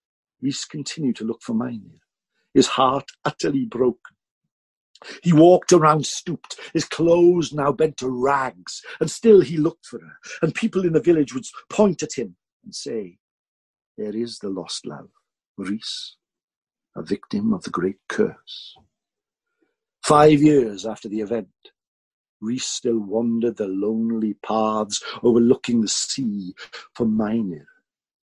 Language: English